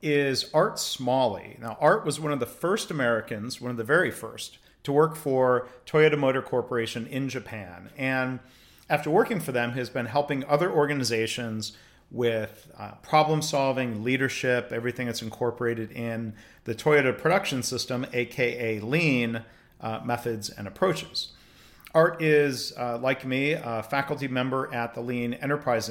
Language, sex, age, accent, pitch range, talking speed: English, male, 40-59, American, 115-145 Hz, 150 wpm